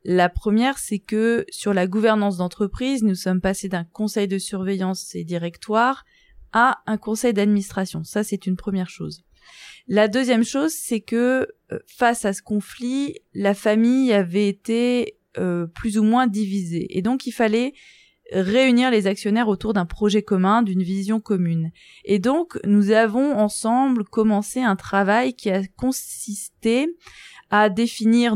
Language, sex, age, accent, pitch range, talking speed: French, female, 20-39, French, 195-245 Hz, 150 wpm